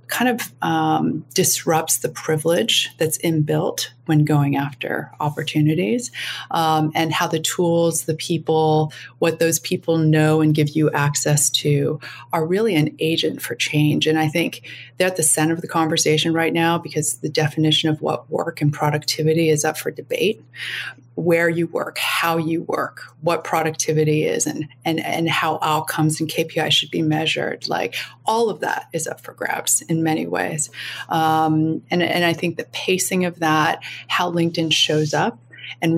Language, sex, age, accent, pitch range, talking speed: English, female, 30-49, American, 150-165 Hz, 170 wpm